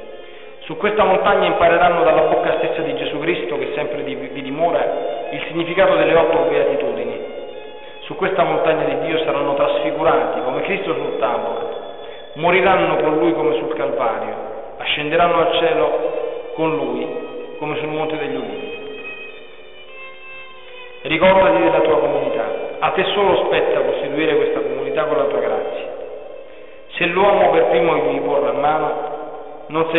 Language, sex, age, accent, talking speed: Italian, male, 40-59, native, 140 wpm